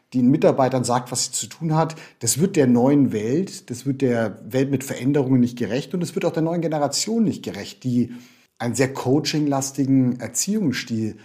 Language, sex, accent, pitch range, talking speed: German, male, German, 120-145 Hz, 190 wpm